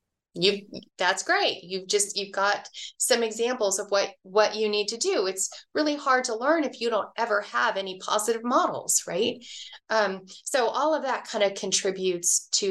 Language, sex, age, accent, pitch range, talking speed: English, female, 30-49, American, 185-240 Hz, 185 wpm